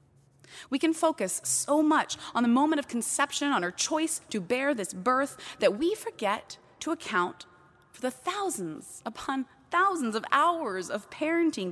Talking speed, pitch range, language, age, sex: 160 wpm, 190-280 Hz, English, 20-39, female